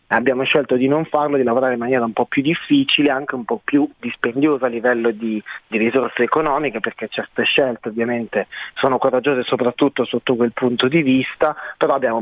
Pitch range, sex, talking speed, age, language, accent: 125-155 Hz, male, 185 wpm, 30-49, Italian, native